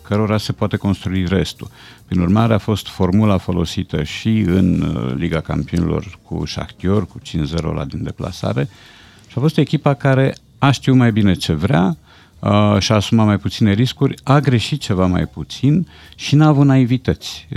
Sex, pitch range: male, 90-115 Hz